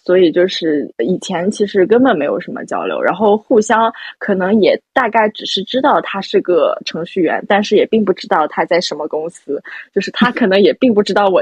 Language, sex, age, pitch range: Chinese, female, 20-39, 195-265 Hz